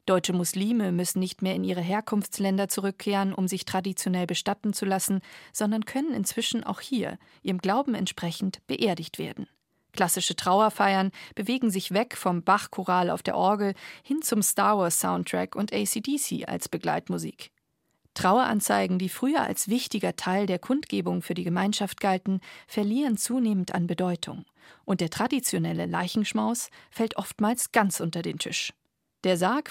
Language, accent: German, German